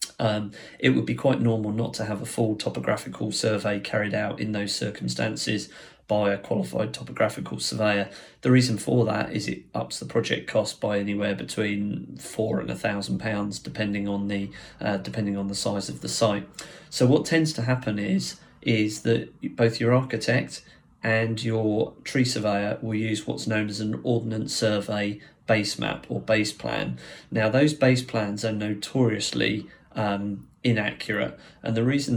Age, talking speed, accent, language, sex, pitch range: 30-49, 170 wpm, British, English, male, 105-115 Hz